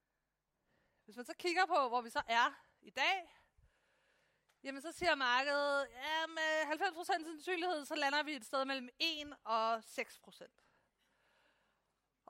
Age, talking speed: 30-49, 135 wpm